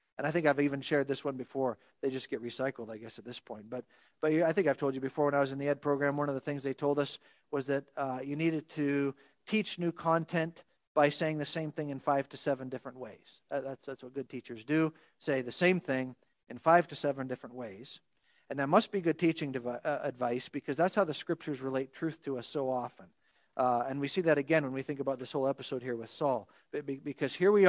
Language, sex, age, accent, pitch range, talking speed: English, male, 40-59, American, 140-195 Hz, 250 wpm